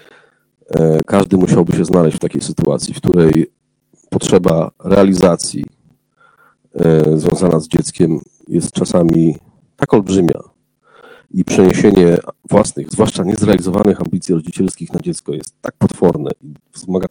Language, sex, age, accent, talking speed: Polish, male, 40-59, native, 110 wpm